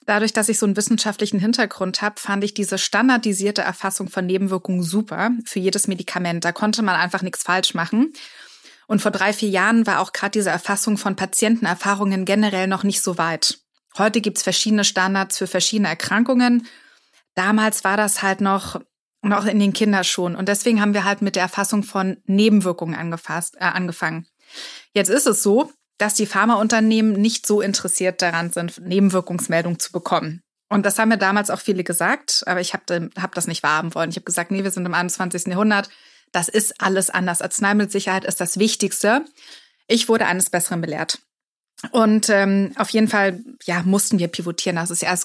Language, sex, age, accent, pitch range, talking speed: German, female, 20-39, German, 180-215 Hz, 180 wpm